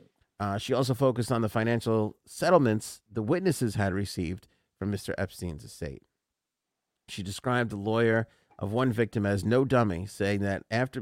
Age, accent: 40-59, American